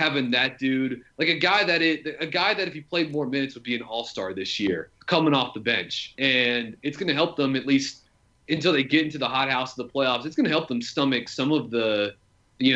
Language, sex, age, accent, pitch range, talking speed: English, male, 30-49, American, 120-150 Hz, 255 wpm